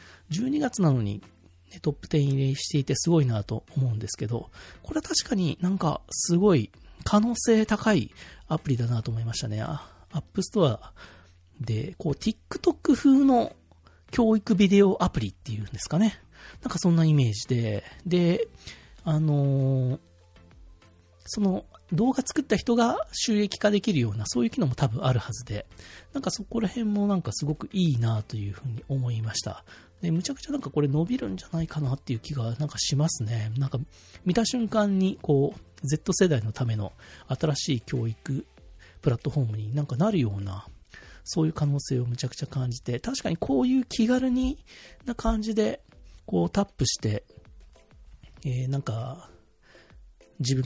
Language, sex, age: Japanese, male, 40-59